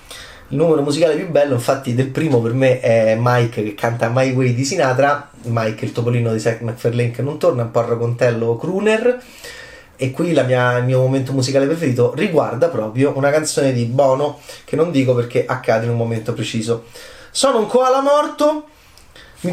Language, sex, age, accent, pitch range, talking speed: Italian, male, 30-49, native, 130-215 Hz, 185 wpm